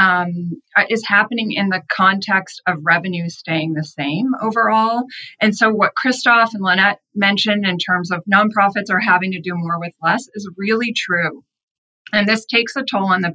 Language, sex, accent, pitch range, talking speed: English, female, American, 180-220 Hz, 180 wpm